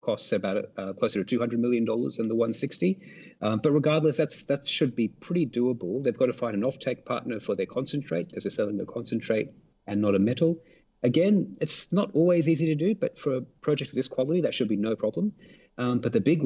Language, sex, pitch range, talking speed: English, male, 100-140 Hz, 220 wpm